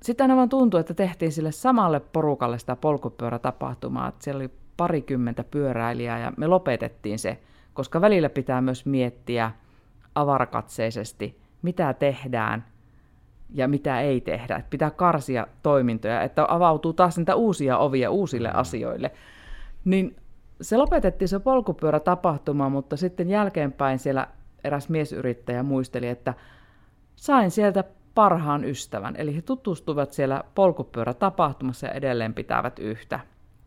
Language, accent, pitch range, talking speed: Finnish, native, 130-180 Hz, 125 wpm